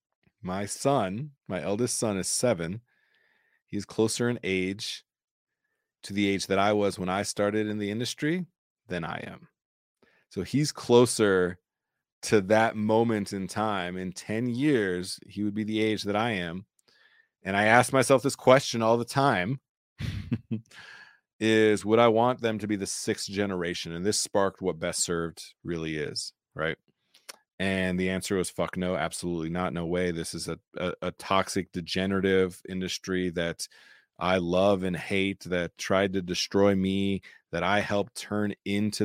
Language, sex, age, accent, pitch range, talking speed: English, male, 30-49, American, 95-115 Hz, 165 wpm